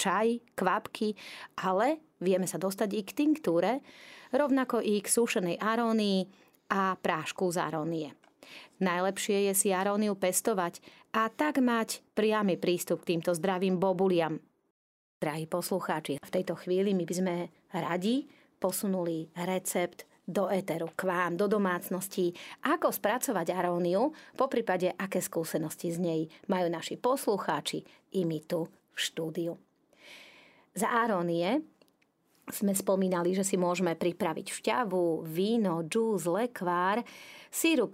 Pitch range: 180-220 Hz